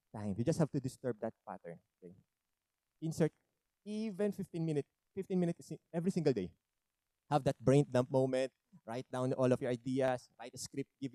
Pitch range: 125-165 Hz